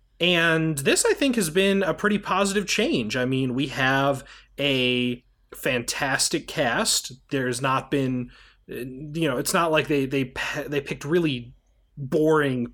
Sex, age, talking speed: male, 30-49, 145 wpm